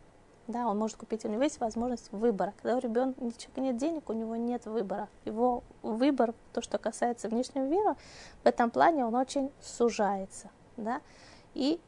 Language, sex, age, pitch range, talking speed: Russian, female, 20-39, 205-245 Hz, 170 wpm